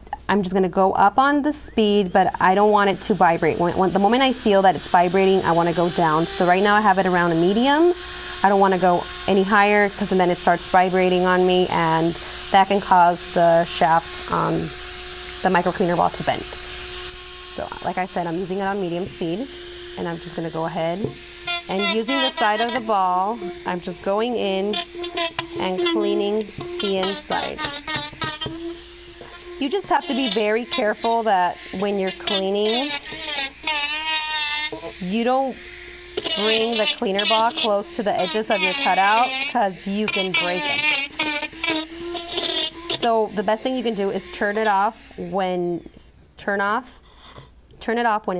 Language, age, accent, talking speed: English, 20-39, American, 170 wpm